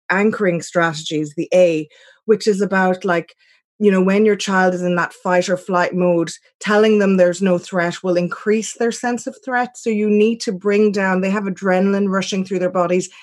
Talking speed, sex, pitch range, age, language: 200 wpm, female, 175-205 Hz, 20-39, English